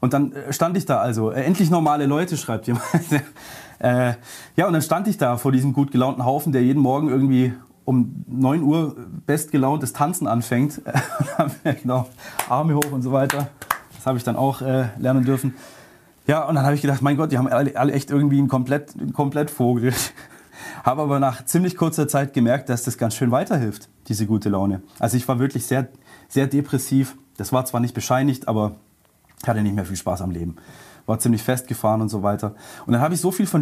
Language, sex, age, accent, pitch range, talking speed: German, male, 30-49, German, 120-145 Hz, 205 wpm